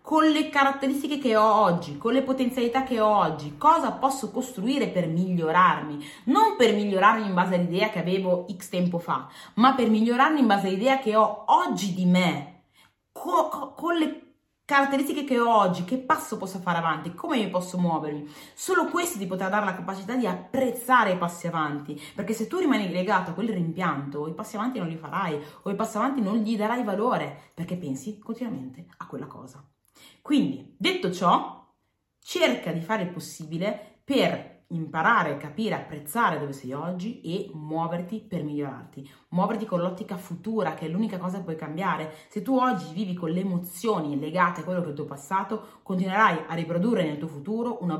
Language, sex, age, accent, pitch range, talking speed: Italian, female, 30-49, native, 165-230 Hz, 180 wpm